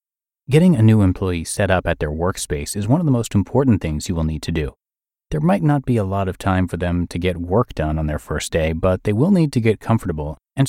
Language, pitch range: English, 90-125 Hz